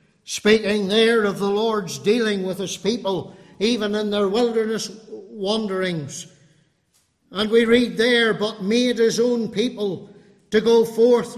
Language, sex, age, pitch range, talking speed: English, male, 60-79, 165-245 Hz, 135 wpm